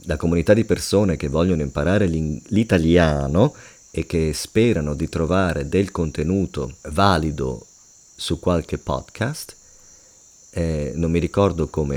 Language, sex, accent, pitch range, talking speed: English, male, Italian, 75-90 Hz, 120 wpm